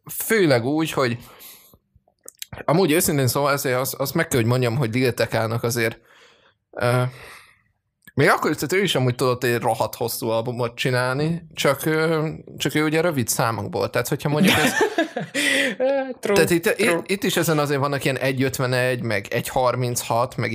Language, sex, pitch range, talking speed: Hungarian, male, 115-150 Hz, 160 wpm